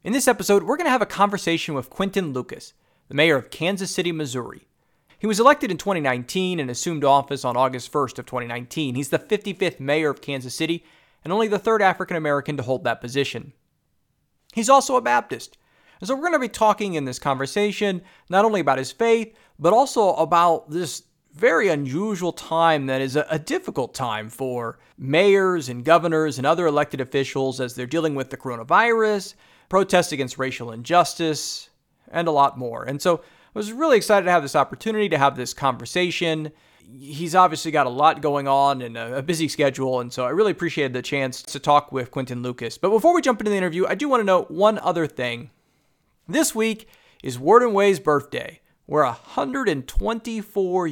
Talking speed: 190 wpm